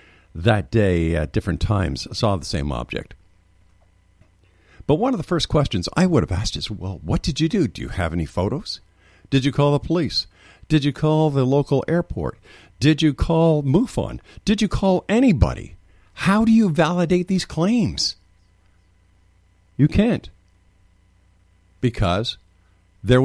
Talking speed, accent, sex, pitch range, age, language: 150 wpm, American, male, 90-130 Hz, 50-69, English